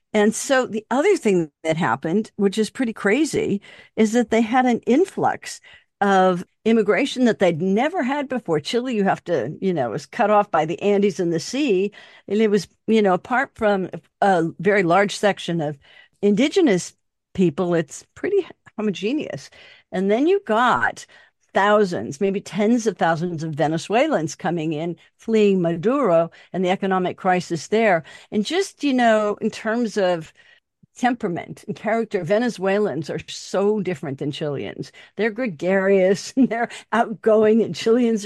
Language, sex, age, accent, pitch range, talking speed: English, female, 50-69, American, 180-230 Hz, 155 wpm